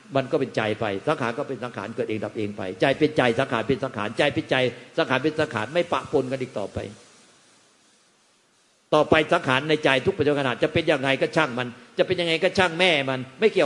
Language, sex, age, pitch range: Thai, male, 60-79, 115-150 Hz